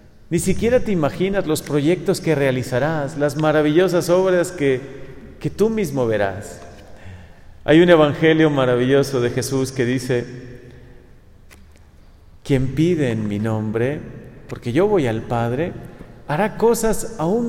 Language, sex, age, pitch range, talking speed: Spanish, male, 40-59, 125-165 Hz, 125 wpm